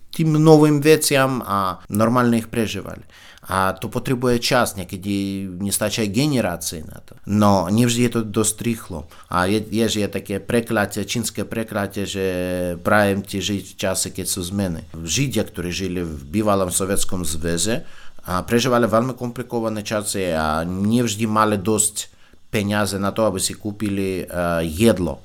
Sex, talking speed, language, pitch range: male, 140 wpm, Slovak, 90-110 Hz